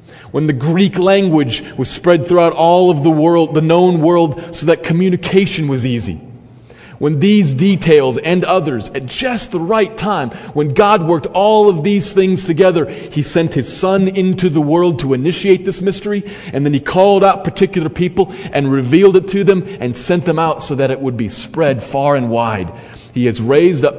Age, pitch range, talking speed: 40-59, 115-175 Hz, 195 wpm